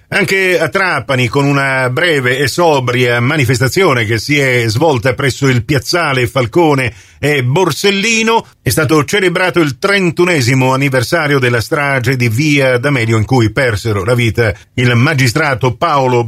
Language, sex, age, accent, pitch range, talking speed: Italian, male, 50-69, native, 115-145 Hz, 140 wpm